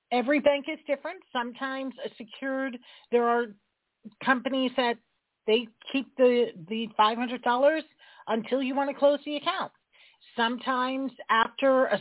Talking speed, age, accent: 140 wpm, 40-59, American